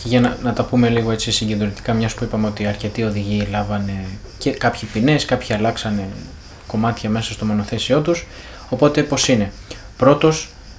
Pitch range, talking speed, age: 105-135 Hz, 165 wpm, 20-39